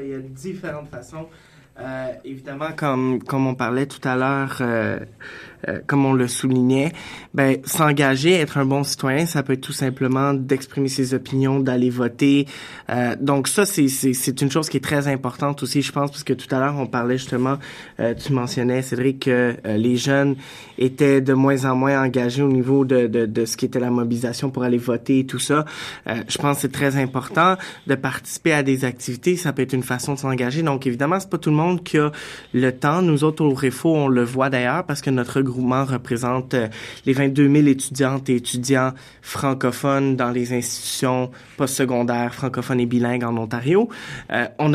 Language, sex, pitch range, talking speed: French, male, 125-145 Hz, 200 wpm